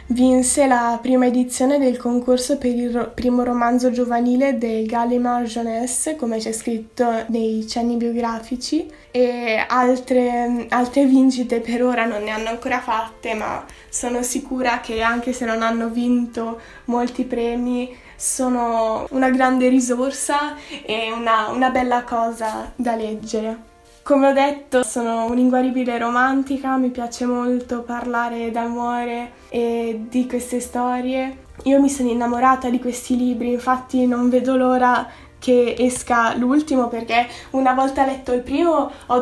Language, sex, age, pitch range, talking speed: Italian, female, 10-29, 235-270 Hz, 135 wpm